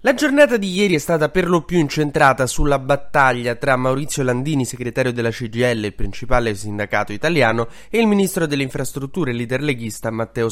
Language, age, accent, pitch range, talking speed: Italian, 20-39, native, 115-150 Hz, 175 wpm